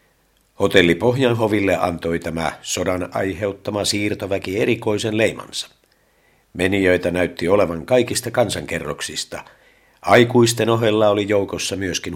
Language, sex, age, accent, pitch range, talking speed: Finnish, male, 50-69, native, 95-115 Hz, 95 wpm